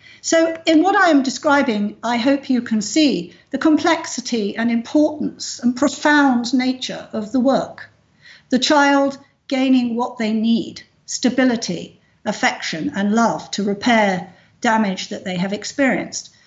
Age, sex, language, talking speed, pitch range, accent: 50-69, female, English, 140 wpm, 210-270 Hz, British